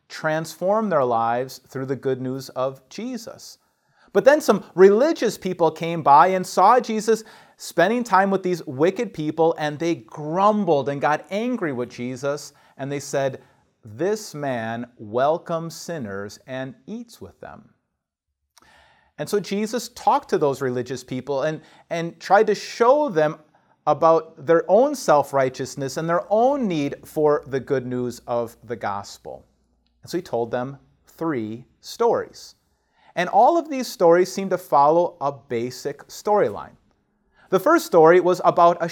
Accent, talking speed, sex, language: American, 150 wpm, male, English